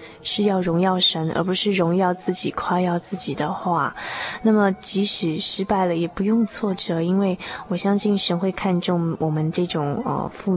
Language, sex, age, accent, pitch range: Chinese, female, 20-39, native, 170-200 Hz